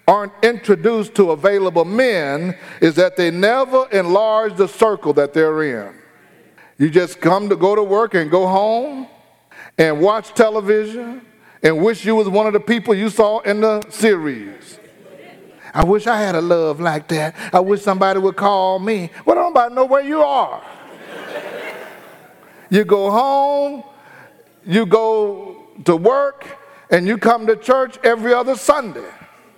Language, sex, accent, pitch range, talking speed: English, male, American, 175-235 Hz, 155 wpm